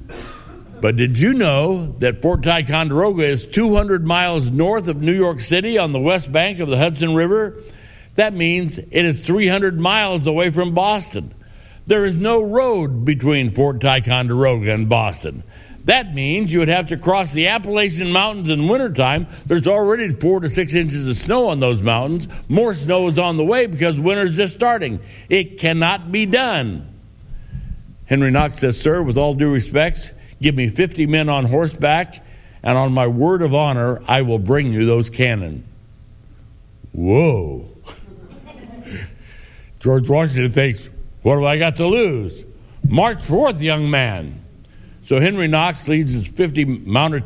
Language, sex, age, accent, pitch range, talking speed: English, male, 60-79, American, 125-175 Hz, 160 wpm